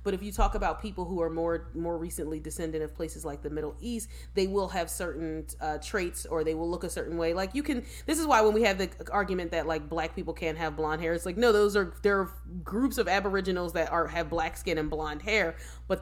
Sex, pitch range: female, 155-200 Hz